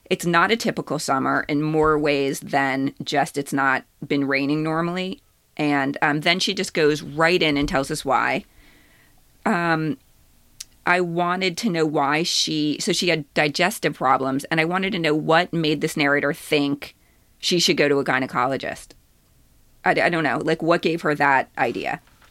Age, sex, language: 30-49, female, English